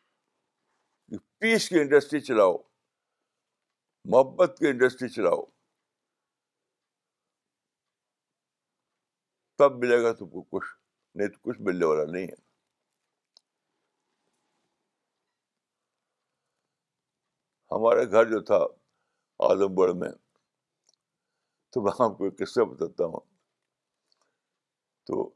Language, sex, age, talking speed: Urdu, male, 60-79, 75 wpm